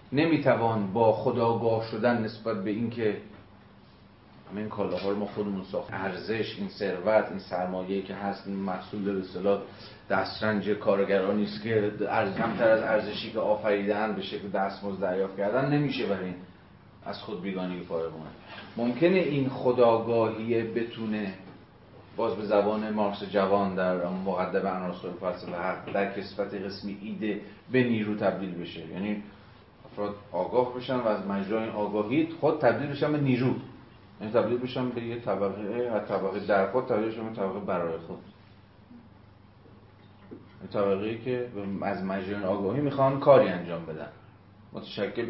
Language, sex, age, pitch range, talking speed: Persian, male, 30-49, 100-115 Hz, 135 wpm